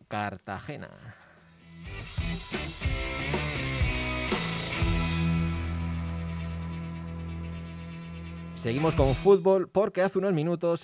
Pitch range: 115-170 Hz